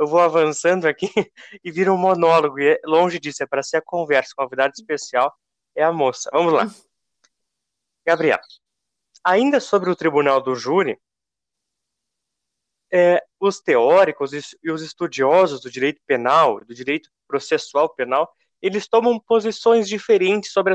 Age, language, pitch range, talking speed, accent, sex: 20-39, Portuguese, 155-205 Hz, 140 wpm, Brazilian, male